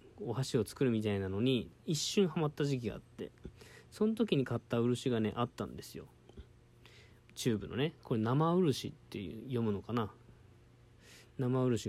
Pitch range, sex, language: 110-130 Hz, male, Japanese